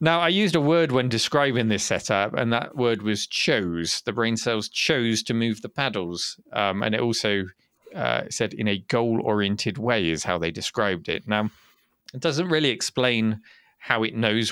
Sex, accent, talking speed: male, British, 185 wpm